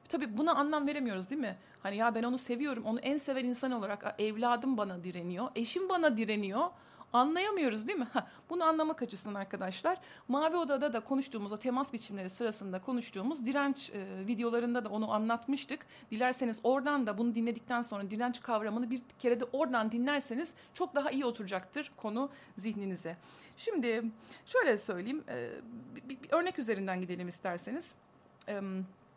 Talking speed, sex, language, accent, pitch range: 155 wpm, female, Turkish, native, 205-280 Hz